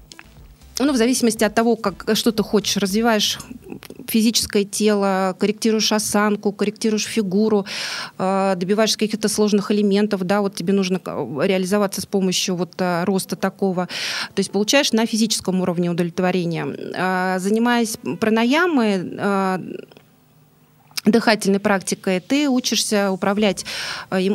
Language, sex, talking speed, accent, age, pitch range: Russian, female, 105 wpm, native, 20-39, 190-220 Hz